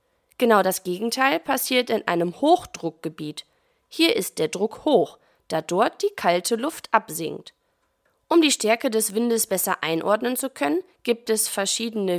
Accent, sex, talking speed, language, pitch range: German, female, 150 wpm, German, 185-285 Hz